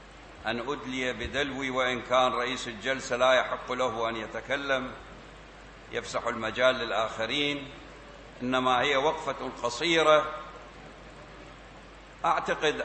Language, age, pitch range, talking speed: Arabic, 60-79, 130-160 Hz, 95 wpm